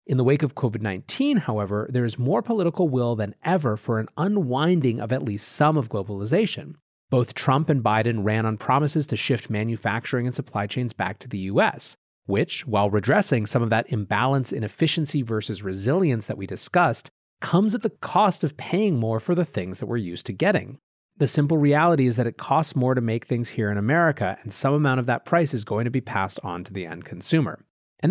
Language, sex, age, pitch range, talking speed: English, male, 30-49, 110-155 Hz, 210 wpm